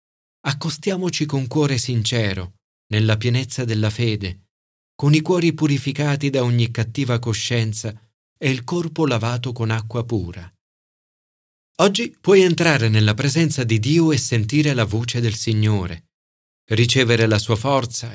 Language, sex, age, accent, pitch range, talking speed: Italian, male, 40-59, native, 105-130 Hz, 130 wpm